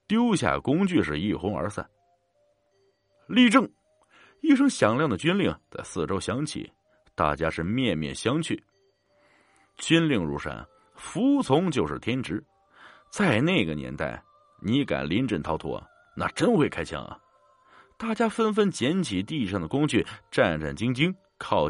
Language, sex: Chinese, male